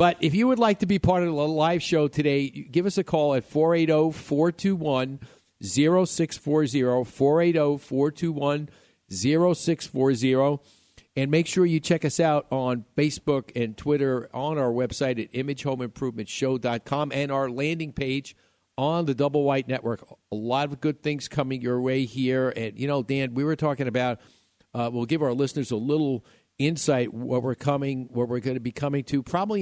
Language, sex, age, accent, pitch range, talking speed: English, male, 50-69, American, 125-150 Hz, 165 wpm